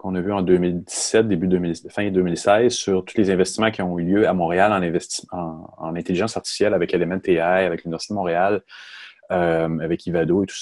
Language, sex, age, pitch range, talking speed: French, male, 30-49, 90-115 Hz, 205 wpm